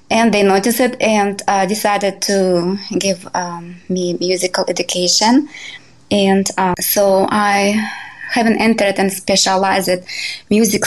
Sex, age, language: female, 20-39, English